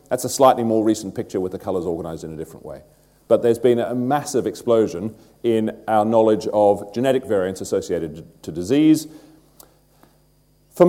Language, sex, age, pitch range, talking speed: English, male, 40-59, 105-140 Hz, 165 wpm